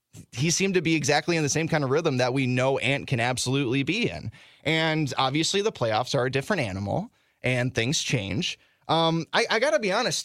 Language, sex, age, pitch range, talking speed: English, male, 20-39, 120-165 Hz, 210 wpm